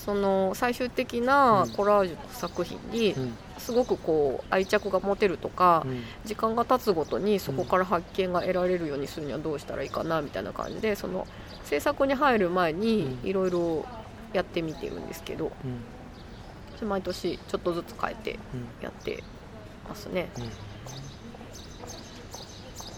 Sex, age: female, 20-39